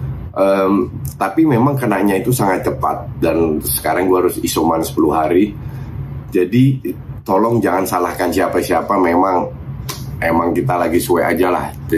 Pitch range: 85-125 Hz